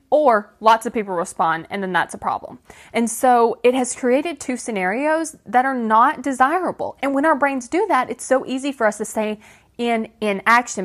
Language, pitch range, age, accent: English, 200-255 Hz, 20-39, American